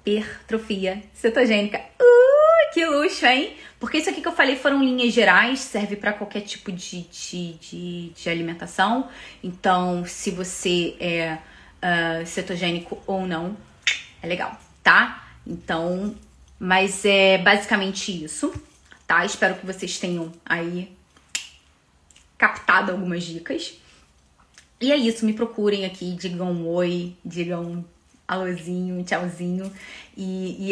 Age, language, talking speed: 20-39, Portuguese, 120 wpm